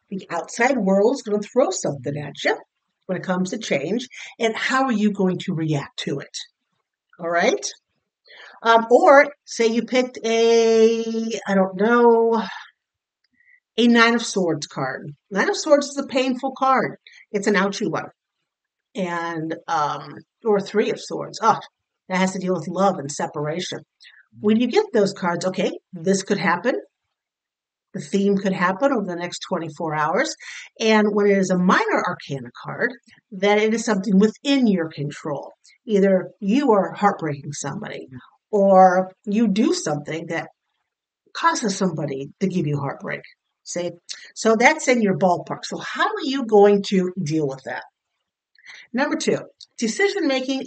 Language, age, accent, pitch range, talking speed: English, 50-69, American, 175-230 Hz, 160 wpm